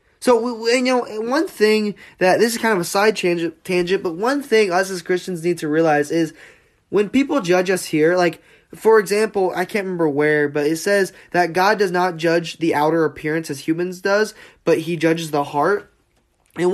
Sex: male